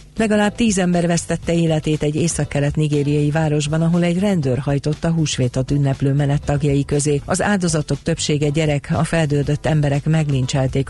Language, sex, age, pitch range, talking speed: Hungarian, female, 40-59, 140-160 Hz, 150 wpm